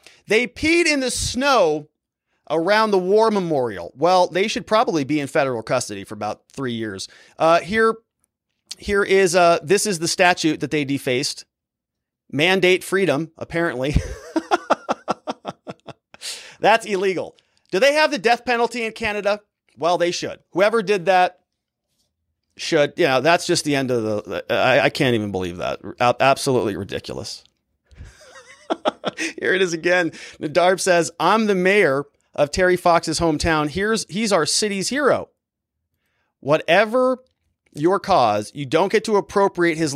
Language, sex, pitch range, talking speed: English, male, 140-200 Hz, 145 wpm